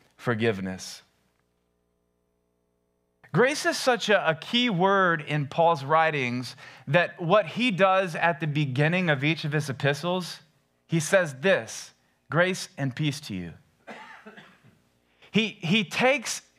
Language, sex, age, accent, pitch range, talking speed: English, male, 30-49, American, 100-165 Hz, 120 wpm